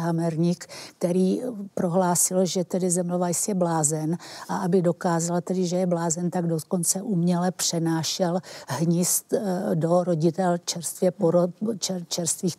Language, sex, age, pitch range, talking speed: Czech, female, 60-79, 165-185 Hz, 115 wpm